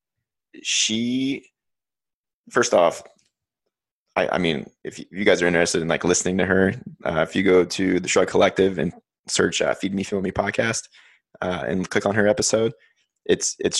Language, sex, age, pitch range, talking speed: English, male, 20-39, 90-105 Hz, 175 wpm